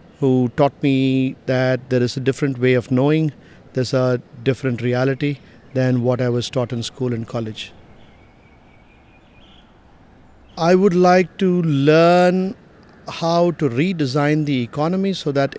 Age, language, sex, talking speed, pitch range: 50-69, English, male, 140 wpm, 125-150 Hz